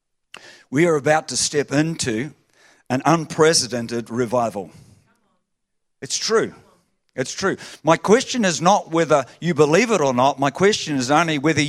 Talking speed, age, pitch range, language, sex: 145 wpm, 50-69, 130-165 Hz, English, male